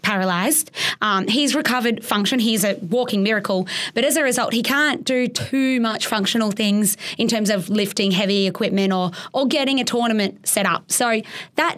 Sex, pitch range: female, 190-230 Hz